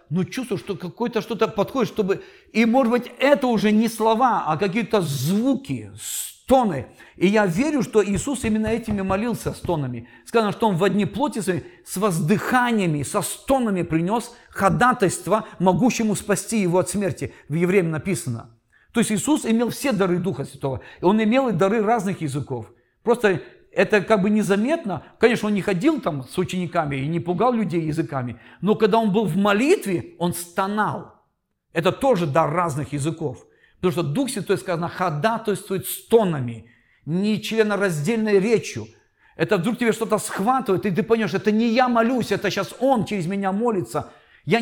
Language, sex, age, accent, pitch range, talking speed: Russian, male, 50-69, native, 170-225 Hz, 165 wpm